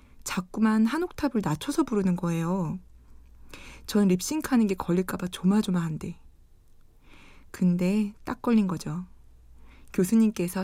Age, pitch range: 20-39, 170-215 Hz